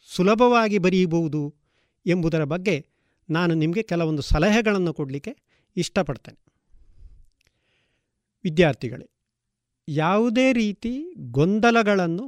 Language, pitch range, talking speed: Kannada, 145-205 Hz, 70 wpm